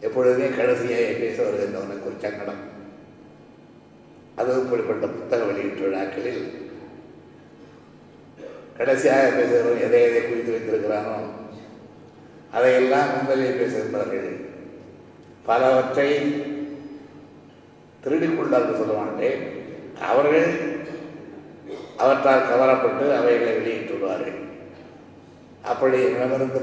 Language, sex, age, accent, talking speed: Tamil, male, 60-79, native, 65 wpm